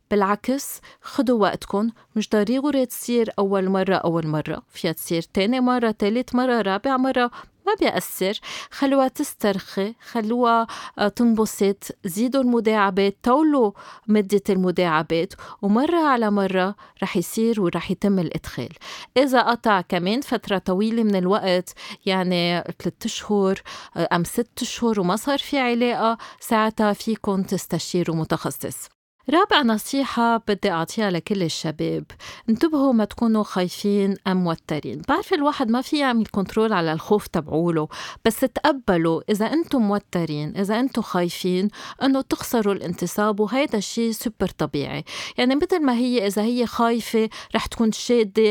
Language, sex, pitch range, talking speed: Arabic, female, 185-240 Hz, 130 wpm